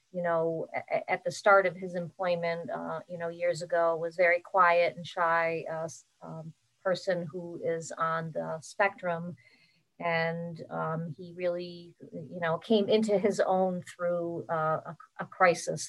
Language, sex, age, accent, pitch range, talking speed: English, female, 40-59, American, 165-185 Hz, 155 wpm